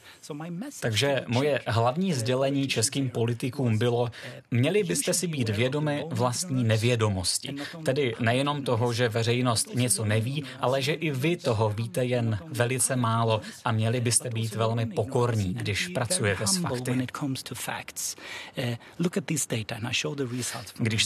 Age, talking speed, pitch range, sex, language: 30-49, 115 wpm, 115-145 Hz, male, Czech